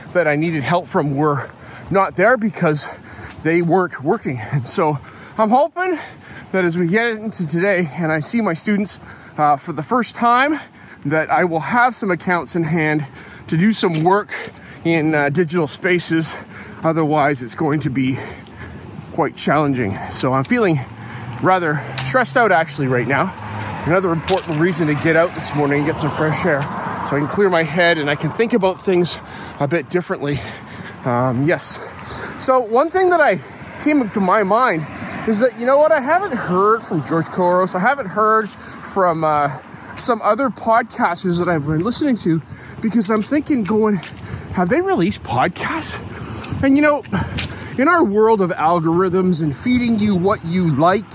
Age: 30-49